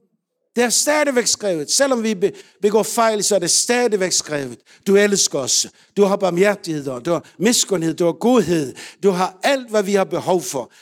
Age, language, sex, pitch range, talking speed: 60-79, Danish, male, 185-225 Hz, 185 wpm